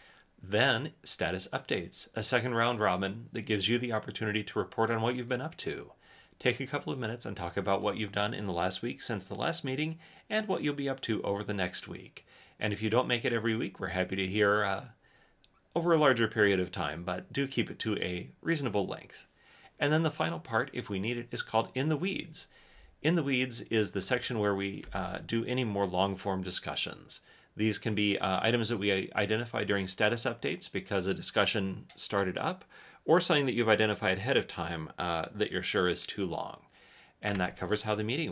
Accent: American